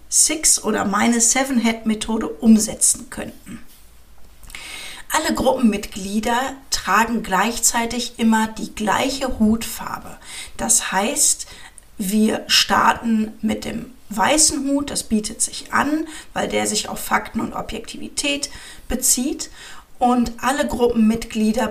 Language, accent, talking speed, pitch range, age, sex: German, German, 100 wpm, 210-250 Hz, 40-59, female